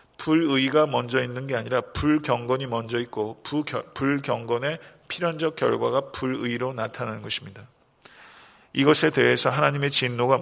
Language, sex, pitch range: Korean, male, 120-140 Hz